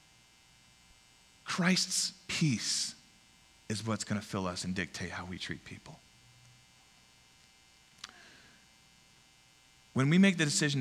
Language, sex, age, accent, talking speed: English, male, 40-59, American, 105 wpm